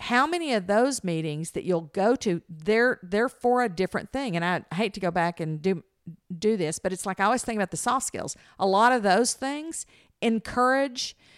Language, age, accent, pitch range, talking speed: English, 50-69, American, 170-235 Hz, 215 wpm